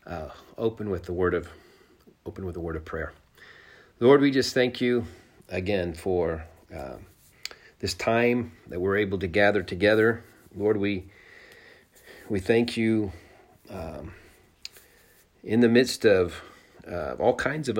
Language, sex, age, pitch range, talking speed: English, male, 40-59, 90-105 Hz, 145 wpm